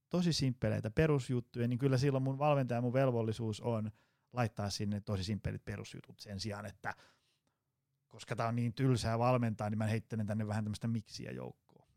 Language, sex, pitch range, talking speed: Finnish, male, 110-140 Hz, 170 wpm